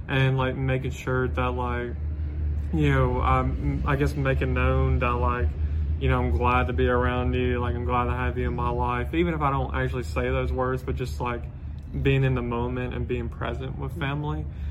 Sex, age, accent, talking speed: male, 20-39, American, 210 wpm